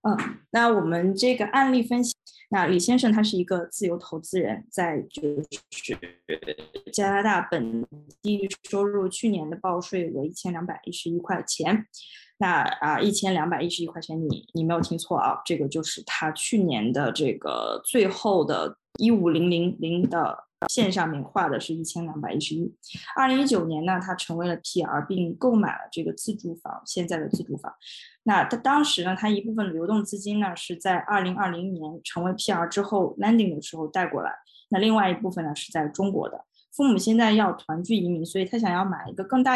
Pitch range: 170-220 Hz